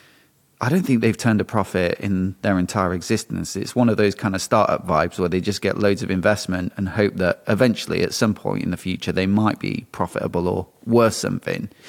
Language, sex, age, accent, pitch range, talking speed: English, male, 30-49, British, 100-130 Hz, 215 wpm